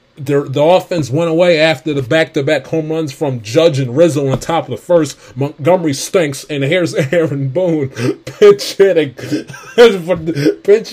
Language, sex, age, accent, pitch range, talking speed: English, male, 30-49, American, 130-160 Hz, 165 wpm